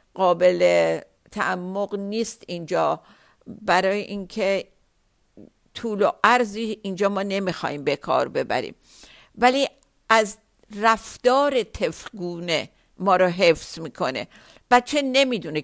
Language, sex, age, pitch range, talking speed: Persian, female, 50-69, 180-225 Hz, 90 wpm